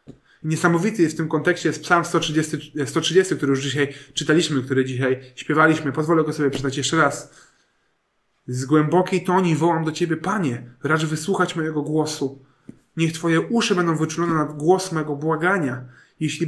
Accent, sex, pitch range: native, male, 130-160 Hz